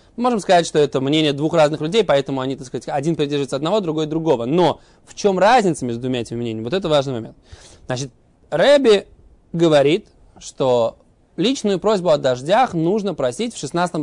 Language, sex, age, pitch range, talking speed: Russian, male, 20-39, 135-200 Hz, 180 wpm